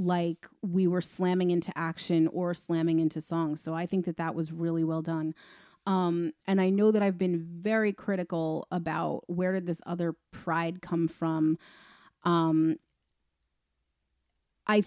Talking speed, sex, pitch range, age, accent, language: 155 wpm, female, 165-195 Hz, 30-49, American, English